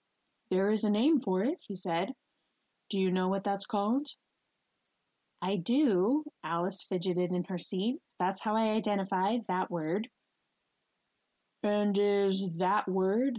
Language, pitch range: English, 190-265 Hz